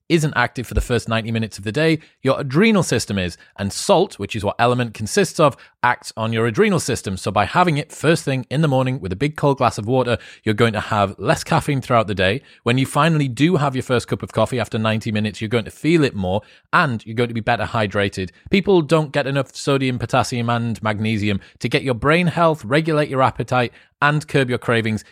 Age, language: 30-49, English